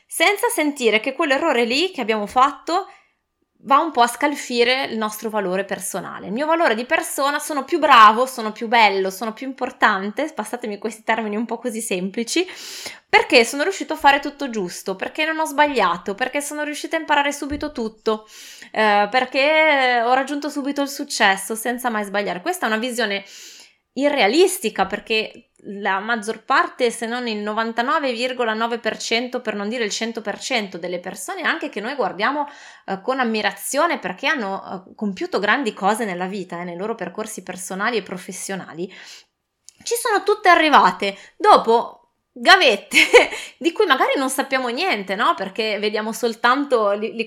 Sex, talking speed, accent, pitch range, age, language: female, 160 wpm, native, 210-290 Hz, 20-39, Italian